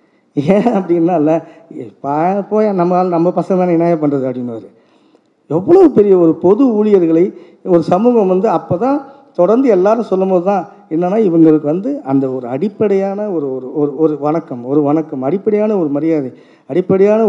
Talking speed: 140 wpm